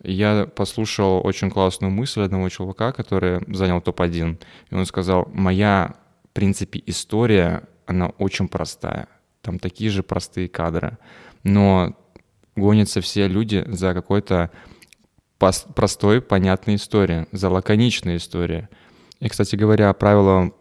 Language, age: Russian, 20-39